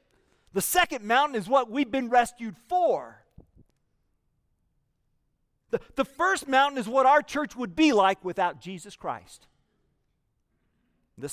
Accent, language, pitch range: American, English, 175-260 Hz